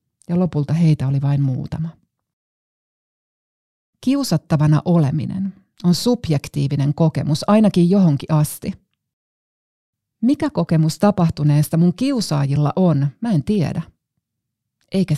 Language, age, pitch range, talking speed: Finnish, 30-49, 145-180 Hz, 95 wpm